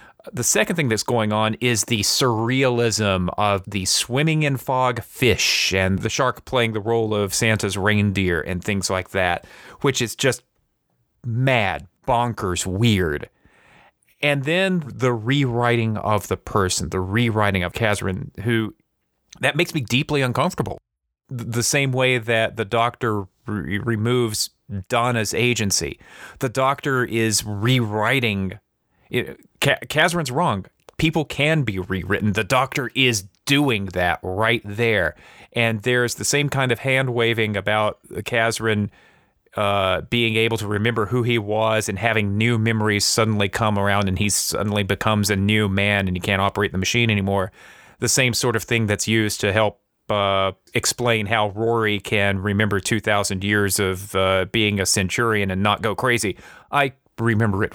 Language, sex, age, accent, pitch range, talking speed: English, male, 30-49, American, 100-120 Hz, 155 wpm